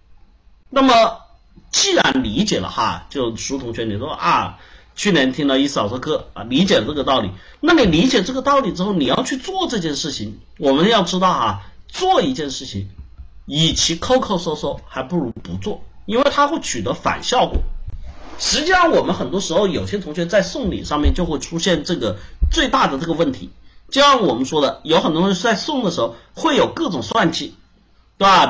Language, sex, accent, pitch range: Chinese, male, native, 140-230 Hz